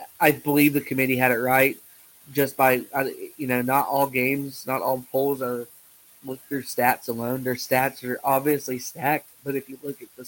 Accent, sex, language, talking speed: American, male, English, 195 wpm